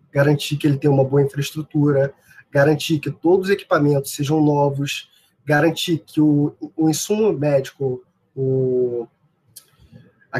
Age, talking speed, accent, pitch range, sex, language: 20-39, 125 wpm, Brazilian, 140-170 Hz, male, Portuguese